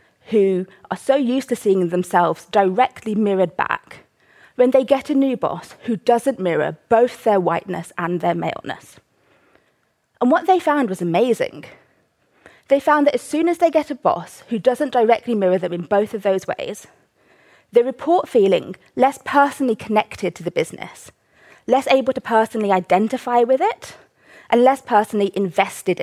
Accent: British